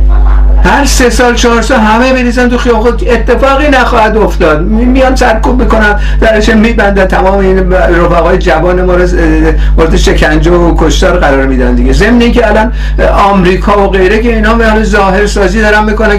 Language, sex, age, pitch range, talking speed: Persian, male, 50-69, 185-235 Hz, 150 wpm